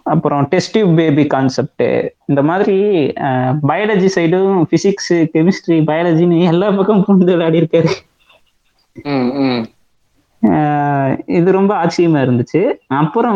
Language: Tamil